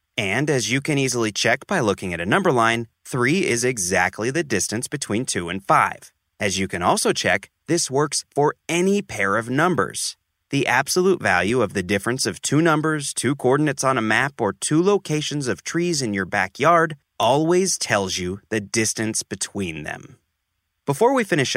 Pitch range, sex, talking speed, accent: 110-160 Hz, male, 180 wpm, American